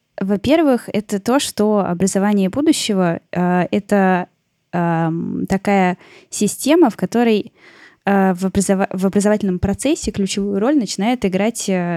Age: 20-39